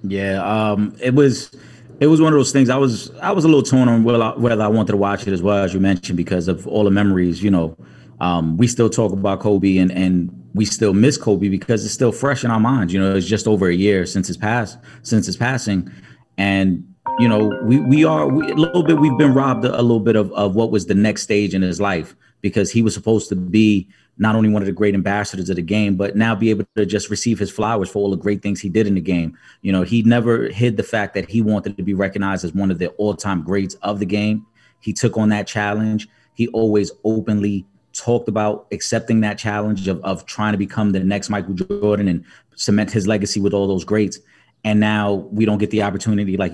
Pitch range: 95-110 Hz